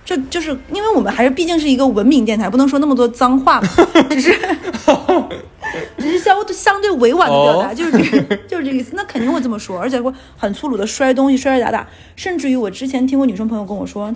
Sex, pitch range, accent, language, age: female, 220-280 Hz, native, Chinese, 30-49